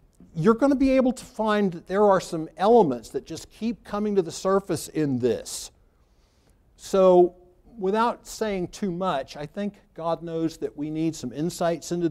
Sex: male